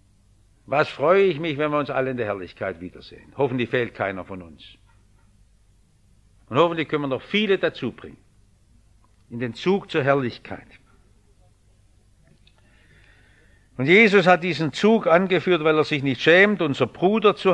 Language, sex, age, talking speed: English, male, 60-79, 150 wpm